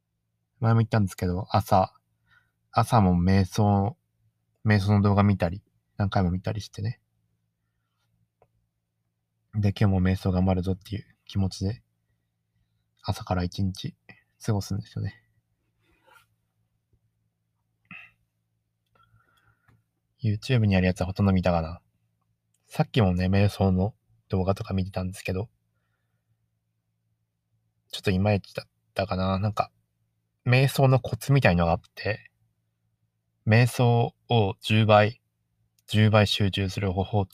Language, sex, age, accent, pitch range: Japanese, male, 20-39, native, 100-115 Hz